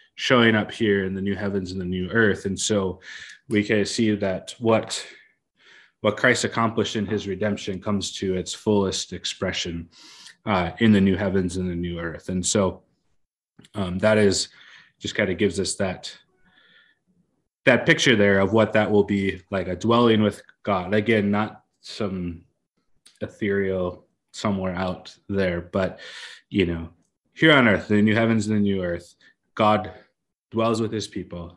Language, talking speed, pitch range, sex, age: English, 165 wpm, 95-110 Hz, male, 20-39